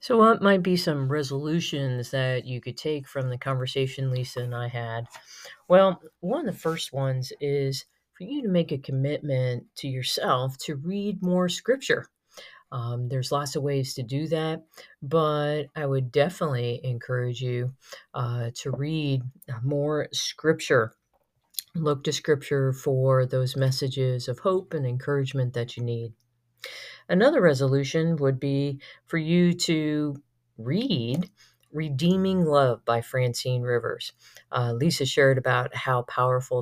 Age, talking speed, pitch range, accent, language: 40-59, 145 wpm, 125-155 Hz, American, English